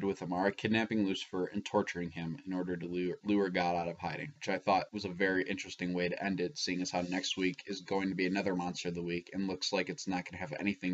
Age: 10-29